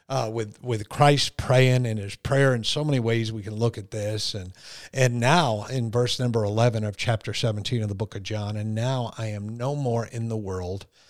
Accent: American